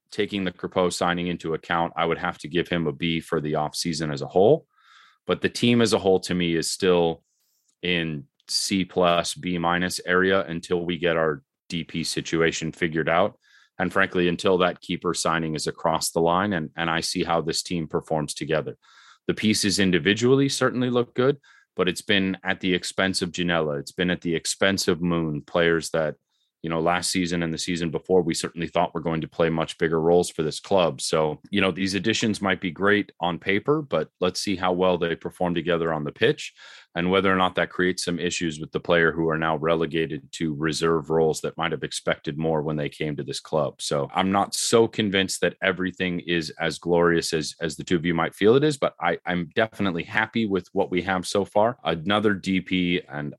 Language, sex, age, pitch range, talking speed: English, male, 30-49, 80-95 Hz, 215 wpm